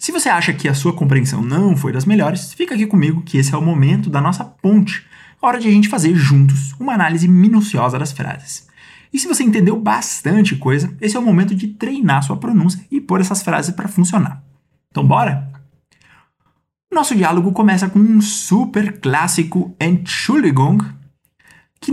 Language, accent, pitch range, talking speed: Portuguese, Brazilian, 140-210 Hz, 180 wpm